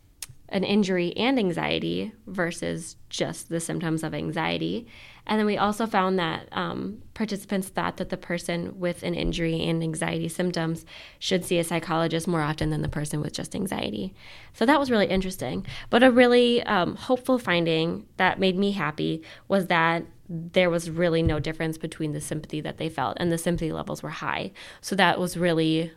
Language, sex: English, female